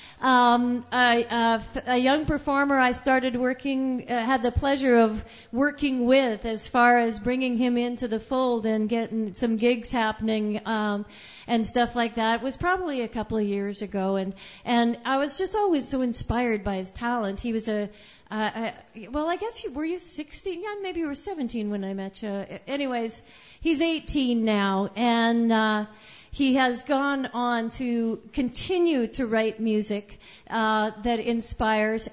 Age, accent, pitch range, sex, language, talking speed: 40-59, American, 225-260 Hz, female, English, 175 wpm